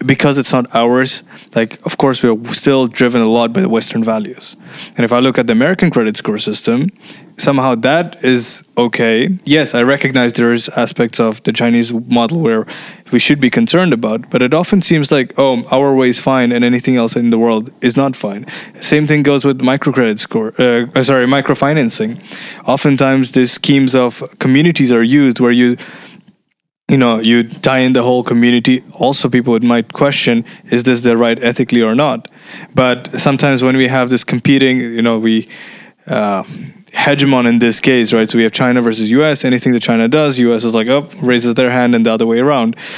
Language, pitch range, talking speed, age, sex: English, 120-145 Hz, 200 wpm, 20-39, male